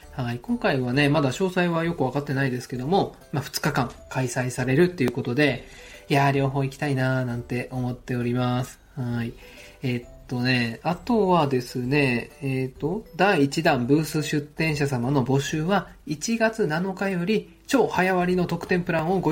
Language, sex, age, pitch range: Japanese, male, 20-39, 125-165 Hz